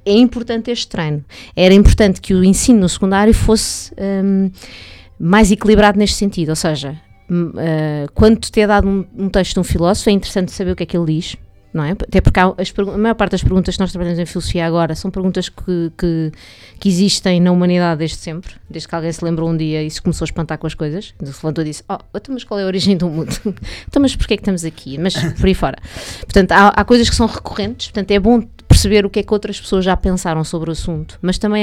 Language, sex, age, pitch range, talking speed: English, female, 20-39, 165-220 Hz, 245 wpm